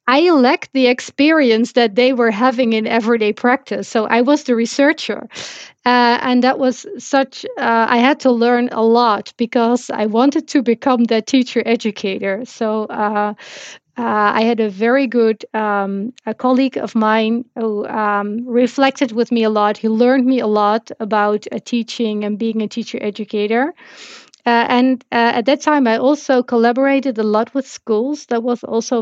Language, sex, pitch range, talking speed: Hebrew, female, 220-255 Hz, 180 wpm